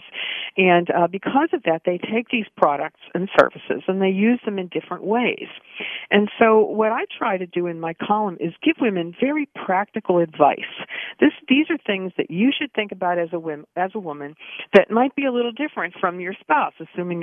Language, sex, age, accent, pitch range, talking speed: English, female, 50-69, American, 160-220 Hz, 205 wpm